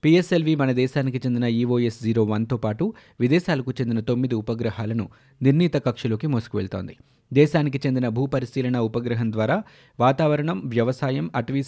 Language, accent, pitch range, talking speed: Telugu, native, 115-140 Hz, 115 wpm